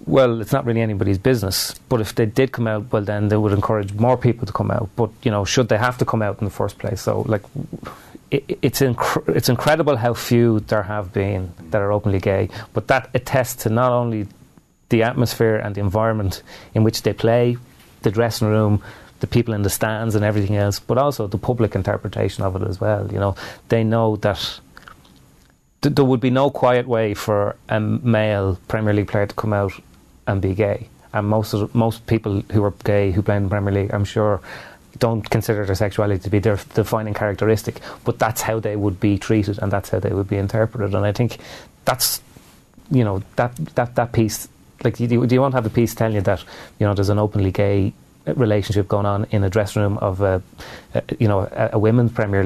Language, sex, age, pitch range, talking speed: English, male, 30-49, 100-115 Hz, 220 wpm